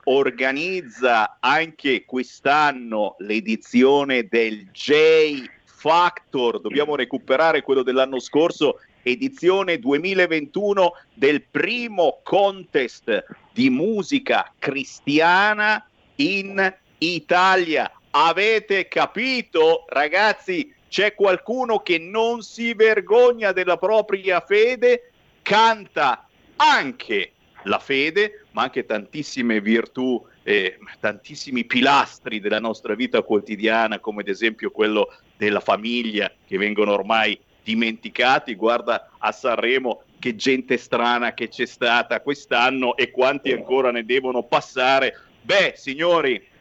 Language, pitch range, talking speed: Italian, 130-215 Hz, 100 wpm